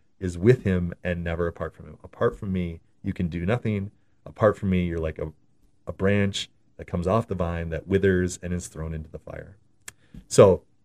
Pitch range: 85-105 Hz